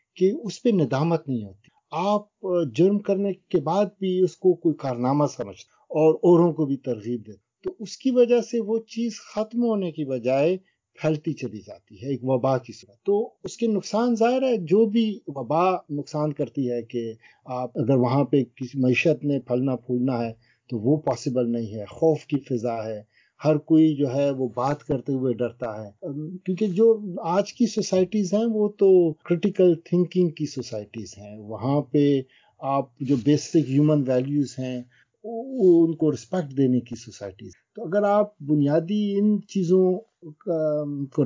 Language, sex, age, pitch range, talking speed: Urdu, male, 50-69, 125-185 Hz, 170 wpm